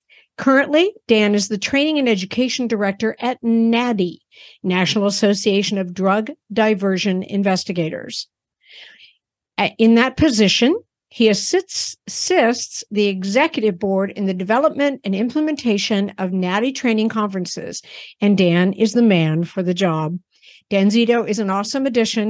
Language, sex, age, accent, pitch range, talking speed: English, female, 50-69, American, 190-235 Hz, 130 wpm